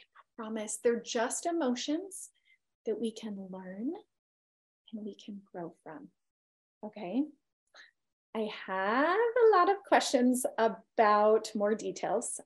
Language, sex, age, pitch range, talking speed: English, female, 30-49, 195-240 Hz, 110 wpm